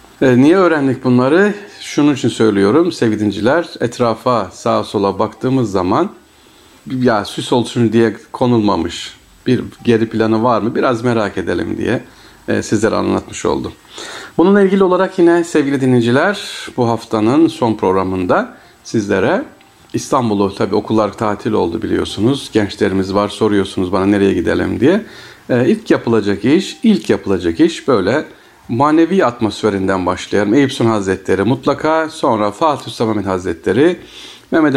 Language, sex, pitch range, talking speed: Turkish, male, 105-125 Hz, 125 wpm